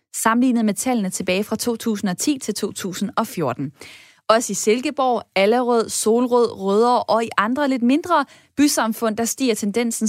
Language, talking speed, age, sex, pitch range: Danish, 135 wpm, 20-39, female, 205-250 Hz